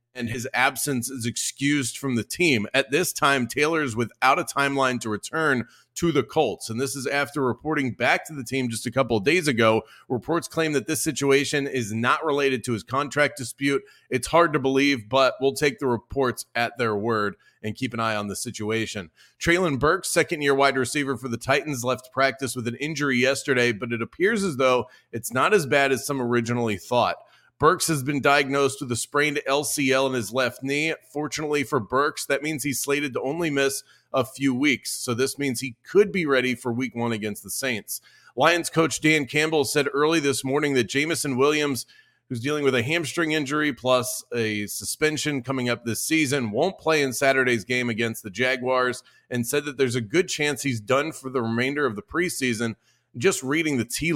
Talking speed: 205 wpm